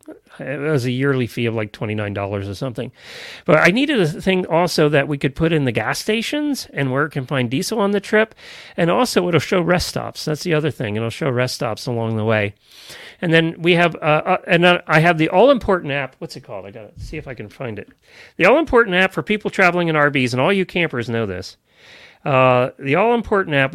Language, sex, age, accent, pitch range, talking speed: English, male, 40-59, American, 130-195 Hz, 230 wpm